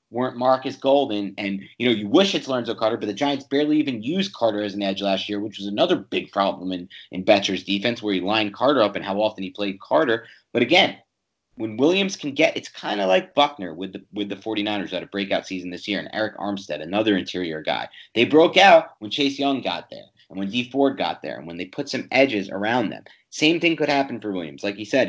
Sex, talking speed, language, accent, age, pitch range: male, 245 wpm, English, American, 30-49, 100-135 Hz